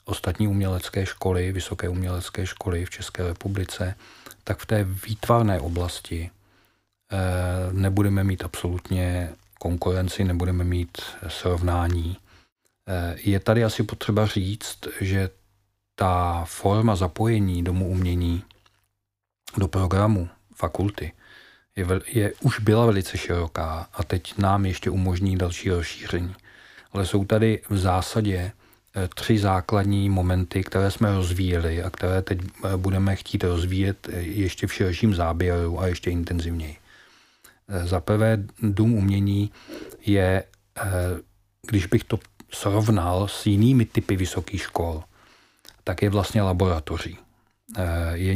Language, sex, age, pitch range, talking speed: Czech, male, 40-59, 90-105 Hz, 115 wpm